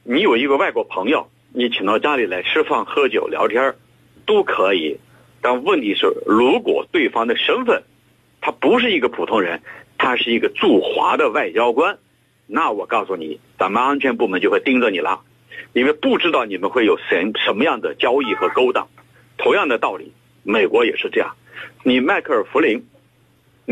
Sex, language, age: male, Chinese, 50-69